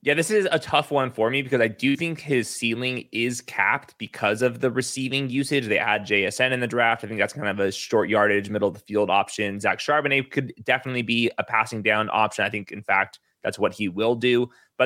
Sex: male